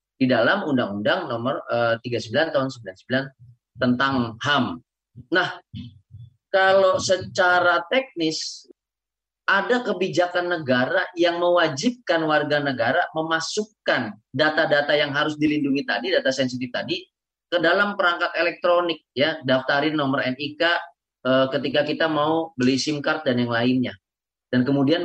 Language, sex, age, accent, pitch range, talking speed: Indonesian, male, 30-49, native, 130-185 Hz, 115 wpm